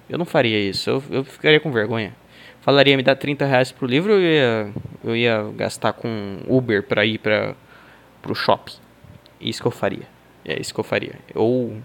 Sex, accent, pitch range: male, Brazilian, 110-160 Hz